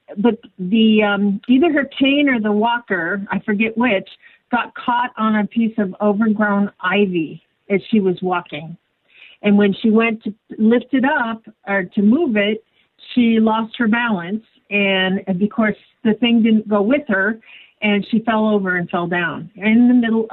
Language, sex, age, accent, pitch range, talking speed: English, female, 50-69, American, 190-230 Hz, 175 wpm